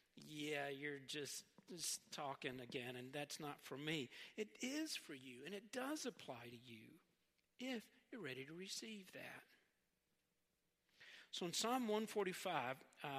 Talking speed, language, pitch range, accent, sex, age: 140 wpm, English, 145-210 Hz, American, male, 50-69